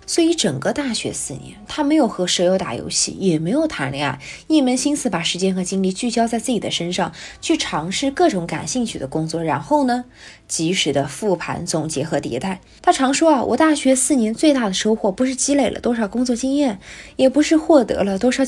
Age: 20-39